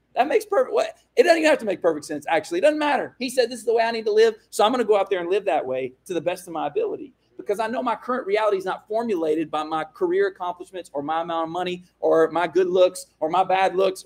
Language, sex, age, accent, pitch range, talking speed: English, male, 30-49, American, 165-240 Hz, 295 wpm